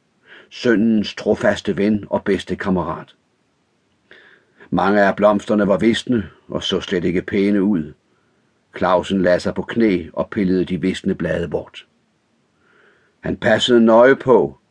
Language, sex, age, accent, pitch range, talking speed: Danish, male, 60-79, native, 95-115 Hz, 130 wpm